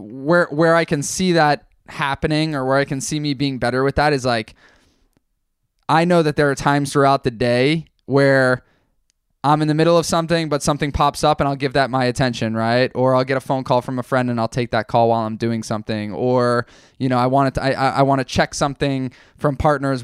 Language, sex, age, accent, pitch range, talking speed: English, male, 20-39, American, 125-150 Hz, 235 wpm